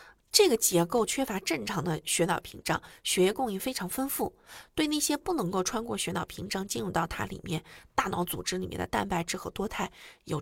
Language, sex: Chinese, female